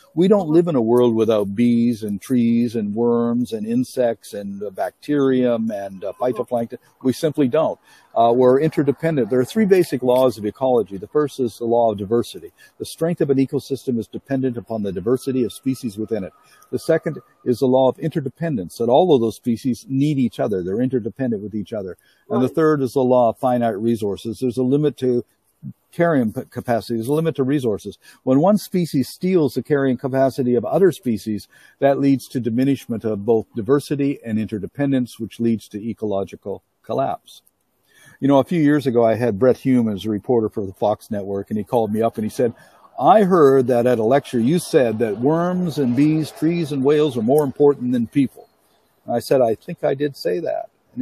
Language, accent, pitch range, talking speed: English, American, 115-145 Hz, 200 wpm